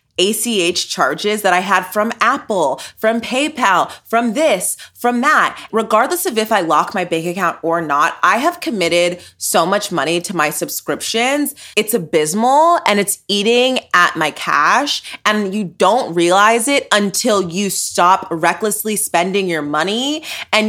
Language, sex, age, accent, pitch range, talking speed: English, female, 20-39, American, 180-255 Hz, 155 wpm